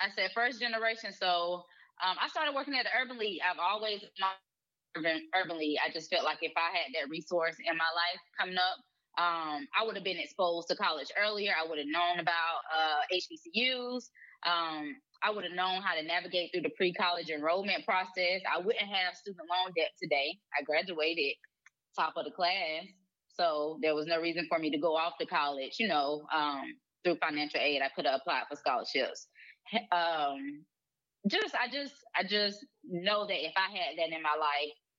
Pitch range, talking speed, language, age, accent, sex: 155-195 Hz, 195 wpm, English, 10-29, American, female